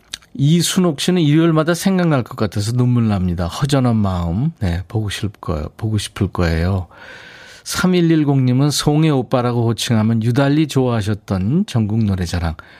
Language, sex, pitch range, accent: Korean, male, 100-150 Hz, native